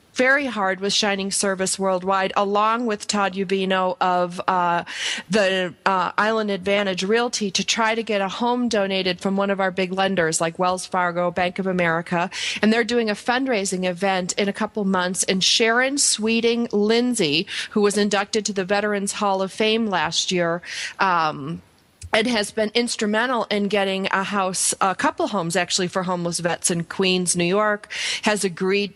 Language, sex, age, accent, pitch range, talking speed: English, female, 40-59, American, 190-220 Hz, 170 wpm